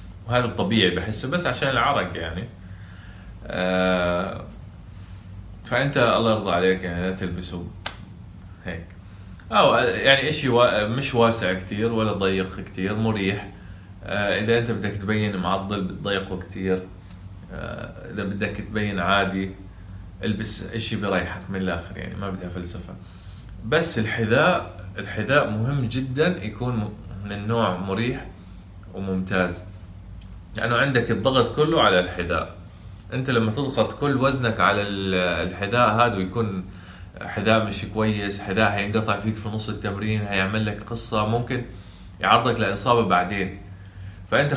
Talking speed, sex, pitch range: 115 wpm, male, 95-115 Hz